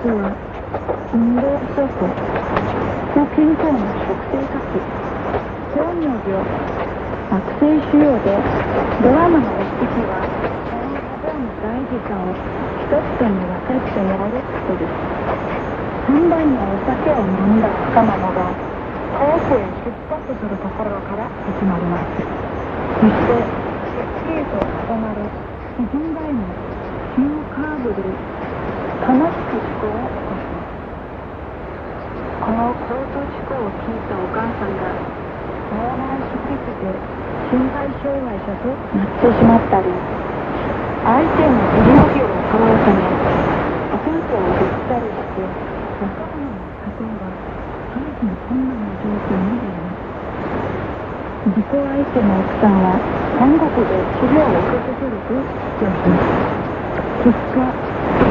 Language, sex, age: Korean, female, 40-59